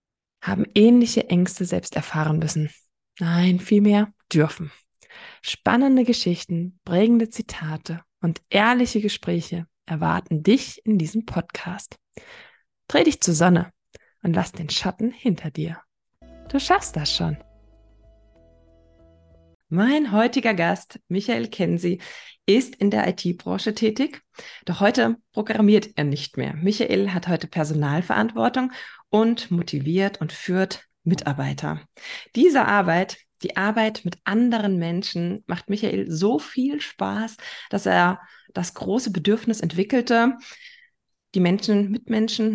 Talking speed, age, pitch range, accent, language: 115 wpm, 20-39, 170-230 Hz, German, German